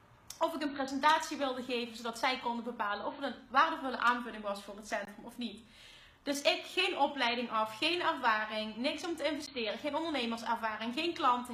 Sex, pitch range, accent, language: female, 255-320 Hz, Dutch, Dutch